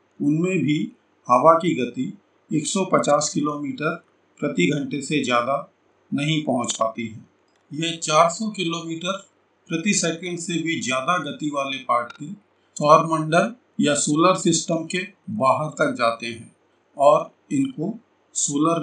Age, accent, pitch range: 50-69, native, 135-180 Hz